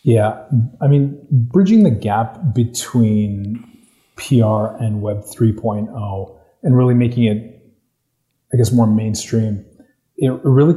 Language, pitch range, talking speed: English, 105-130 Hz, 115 wpm